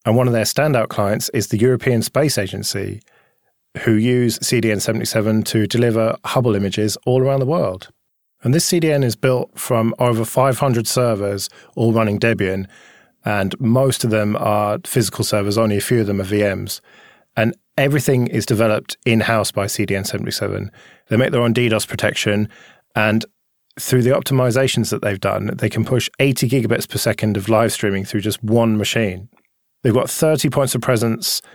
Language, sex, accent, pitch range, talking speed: English, male, British, 105-125 Hz, 165 wpm